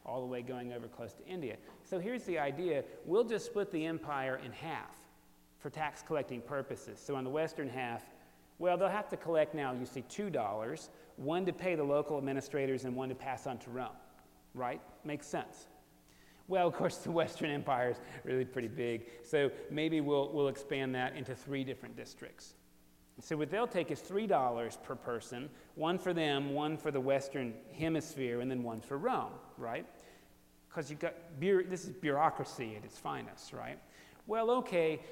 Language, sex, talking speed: English, male, 185 wpm